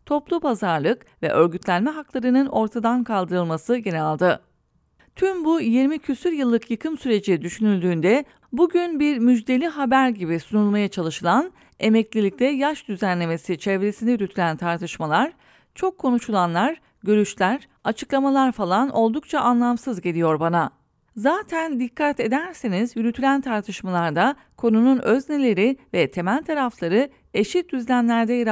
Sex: female